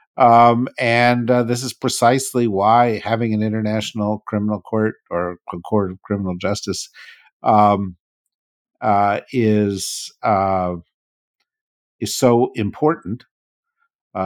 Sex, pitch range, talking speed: male, 90-115 Hz, 105 wpm